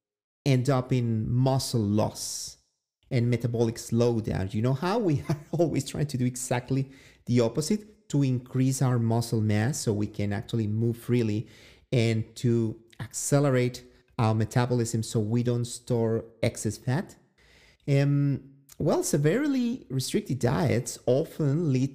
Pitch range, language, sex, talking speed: 110-130 Hz, English, male, 135 wpm